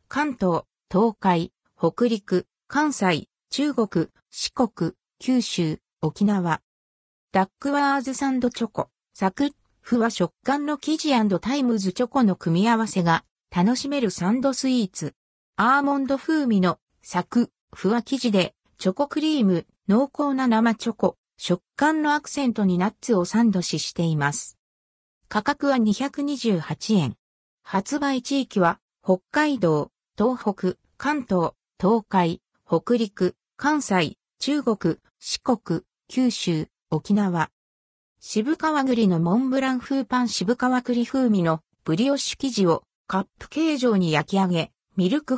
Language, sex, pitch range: Japanese, female, 175-265 Hz